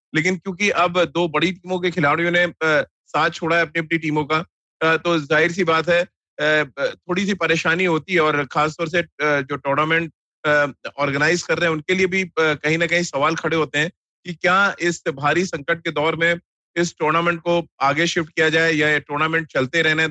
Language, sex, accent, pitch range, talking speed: Hindi, male, native, 150-170 Hz, 190 wpm